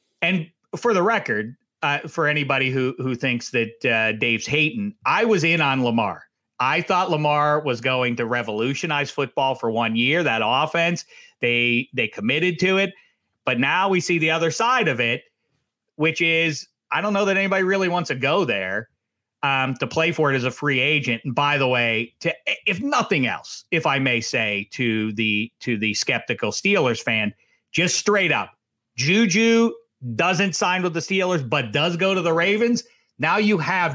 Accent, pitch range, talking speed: American, 125-180 Hz, 185 wpm